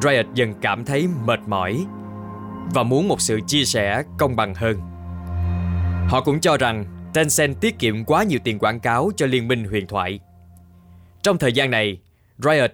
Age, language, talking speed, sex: 20-39, Vietnamese, 175 wpm, male